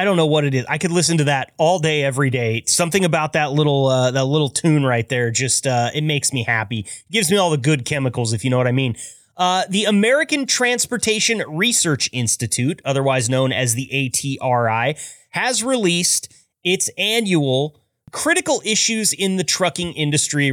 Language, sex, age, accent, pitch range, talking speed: English, male, 30-49, American, 130-180 Hz, 185 wpm